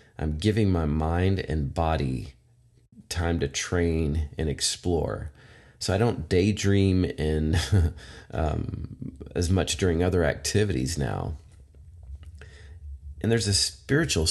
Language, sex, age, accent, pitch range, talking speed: English, male, 30-49, American, 75-90 Hz, 110 wpm